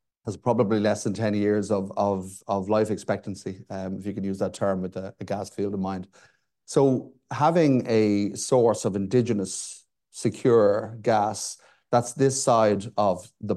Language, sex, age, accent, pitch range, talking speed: English, male, 30-49, Irish, 100-120 Hz, 170 wpm